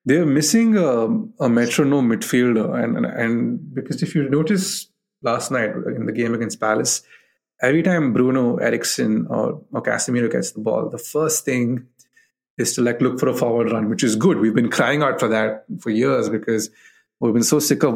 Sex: male